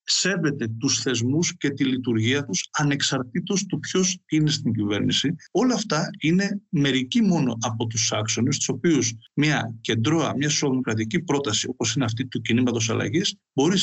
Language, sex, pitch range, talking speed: Greek, male, 115-150 Hz, 150 wpm